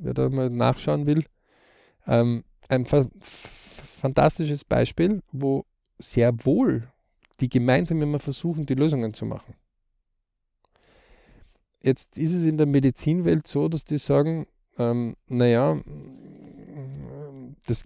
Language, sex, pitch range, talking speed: German, male, 115-150 Hz, 110 wpm